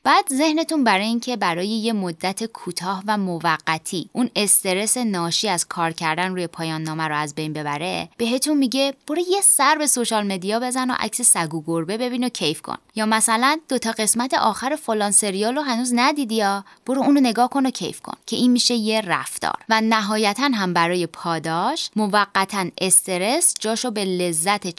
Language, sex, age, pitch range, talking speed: Persian, female, 20-39, 175-245 Hz, 180 wpm